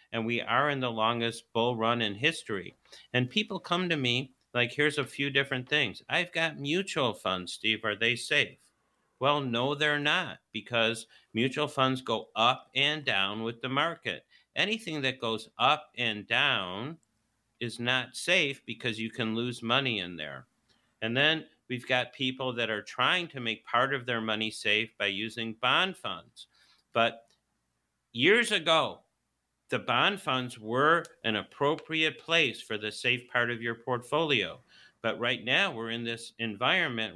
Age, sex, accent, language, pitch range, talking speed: 50-69, male, American, English, 115-140 Hz, 165 wpm